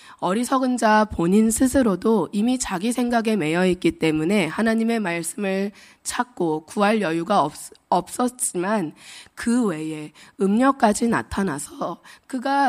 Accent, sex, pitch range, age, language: native, female, 175-235 Hz, 20-39, Korean